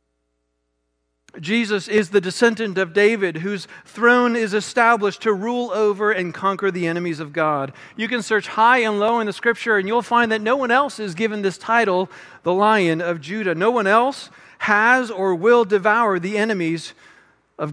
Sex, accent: male, American